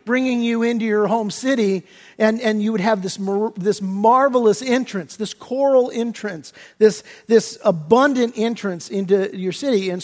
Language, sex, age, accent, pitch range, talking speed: English, male, 50-69, American, 200-240 Hz, 160 wpm